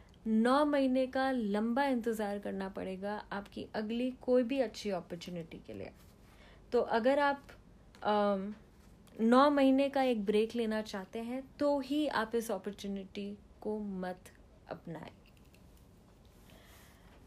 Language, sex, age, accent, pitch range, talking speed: Hindi, female, 30-49, native, 205-270 Hz, 120 wpm